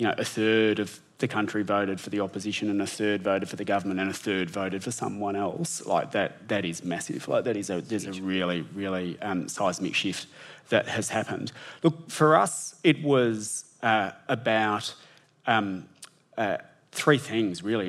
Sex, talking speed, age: male, 190 wpm, 30-49